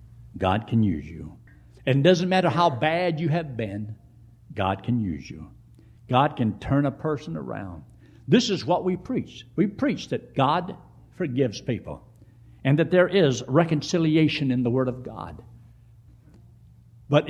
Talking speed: 155 wpm